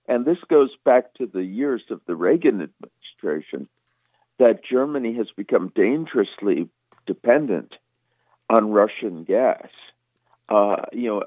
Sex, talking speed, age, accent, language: male, 115 wpm, 50-69, American, English